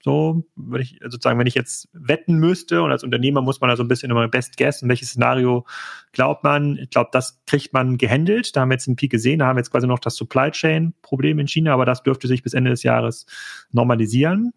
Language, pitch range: German, 125-150 Hz